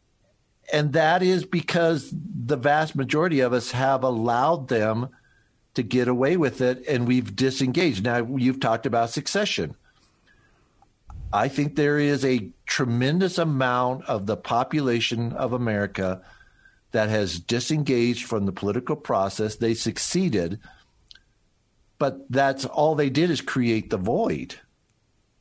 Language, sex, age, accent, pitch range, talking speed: English, male, 60-79, American, 110-135 Hz, 130 wpm